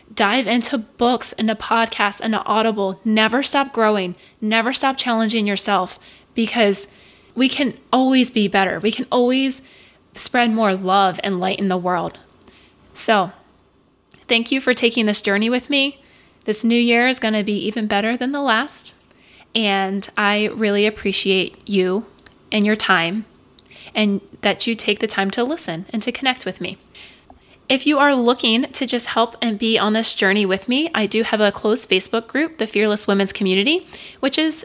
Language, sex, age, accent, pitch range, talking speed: English, female, 20-39, American, 205-250 Hz, 175 wpm